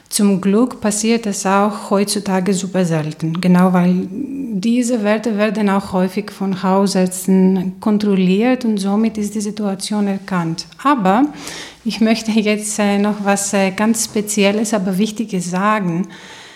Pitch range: 190-220 Hz